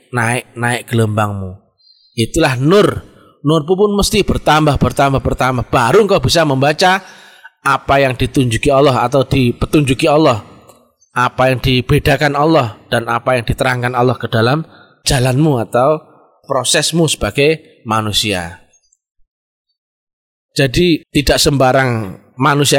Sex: male